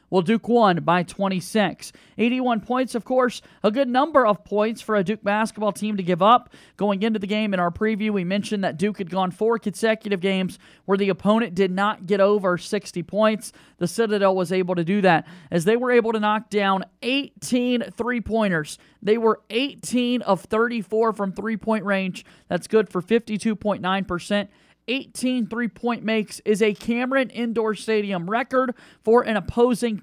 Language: English